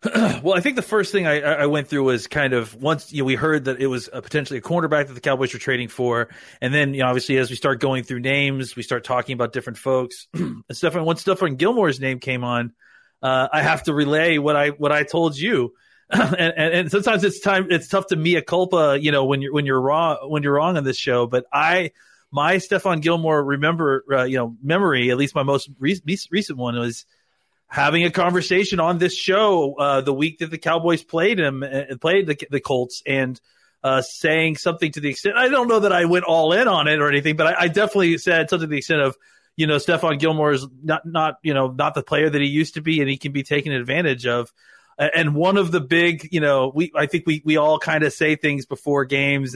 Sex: male